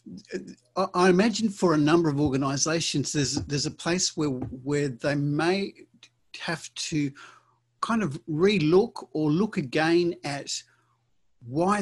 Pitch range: 120-155 Hz